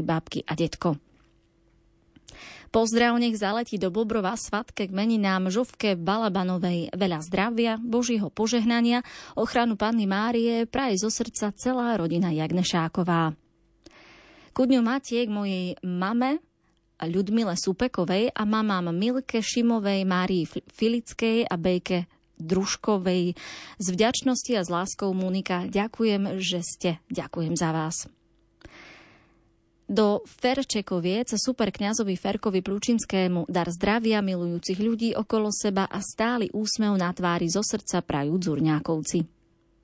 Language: Slovak